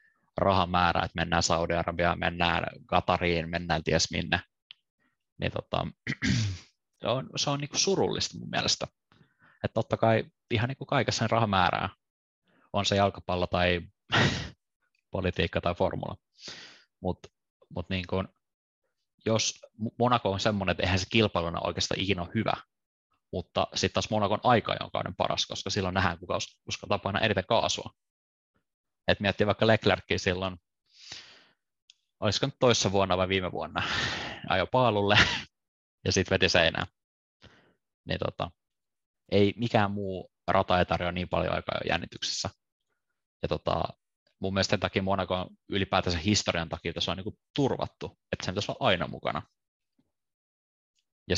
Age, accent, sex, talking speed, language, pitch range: 20-39, native, male, 135 wpm, Finnish, 90-105 Hz